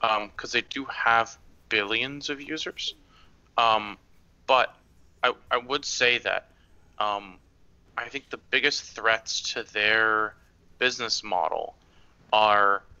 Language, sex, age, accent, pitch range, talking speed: English, male, 20-39, American, 100-120 Hz, 120 wpm